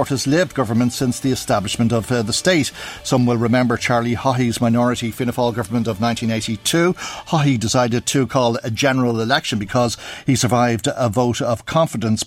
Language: English